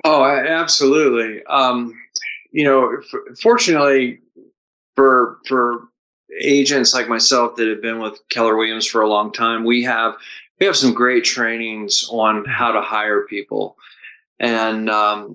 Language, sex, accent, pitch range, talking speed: English, male, American, 110-145 Hz, 140 wpm